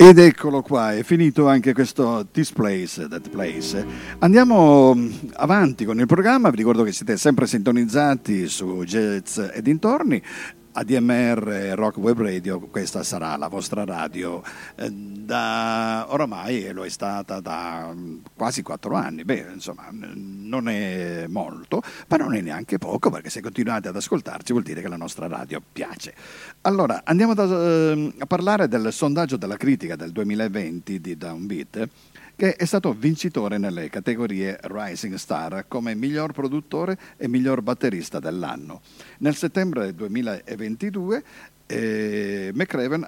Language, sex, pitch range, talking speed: Italian, male, 105-165 Hz, 140 wpm